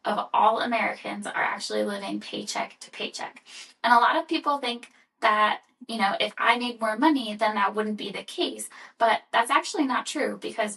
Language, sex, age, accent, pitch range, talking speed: English, female, 10-29, American, 205-255 Hz, 195 wpm